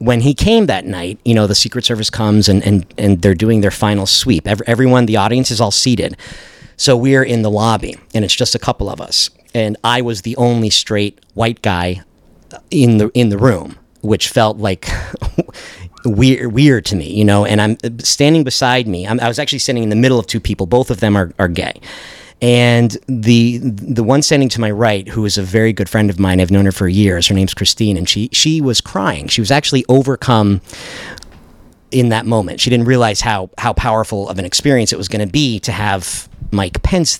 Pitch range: 100-125 Hz